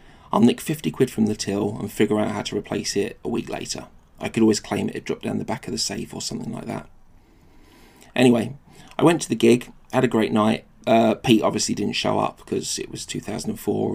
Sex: male